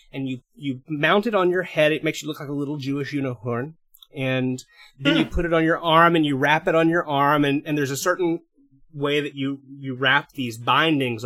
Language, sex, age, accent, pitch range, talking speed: English, male, 30-49, American, 130-160 Hz, 235 wpm